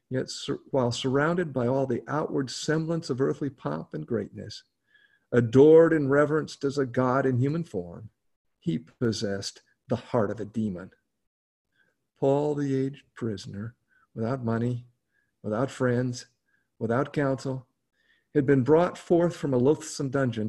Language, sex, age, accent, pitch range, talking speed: English, male, 50-69, American, 115-145 Hz, 140 wpm